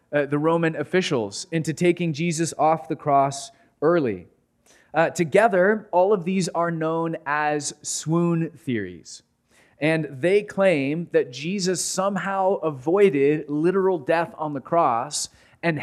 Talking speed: 130 wpm